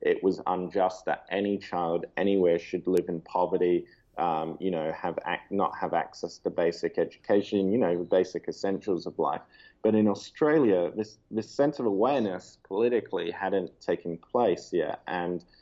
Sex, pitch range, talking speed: male, 90-100 Hz, 165 wpm